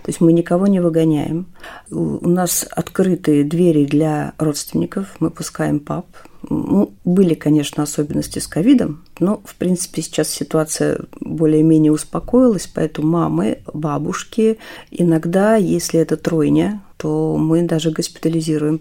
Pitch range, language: 155-200 Hz, Russian